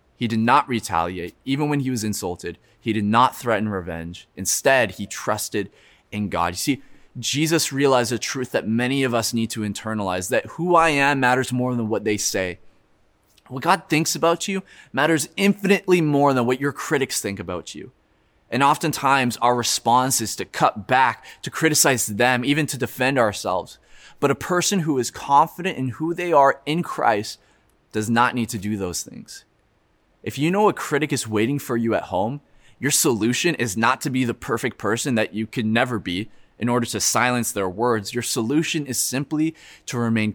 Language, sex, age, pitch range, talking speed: English, male, 20-39, 105-140 Hz, 190 wpm